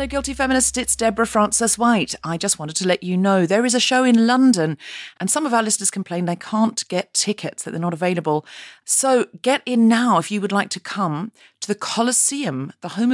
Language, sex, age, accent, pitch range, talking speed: English, female, 40-59, British, 165-220 Hz, 230 wpm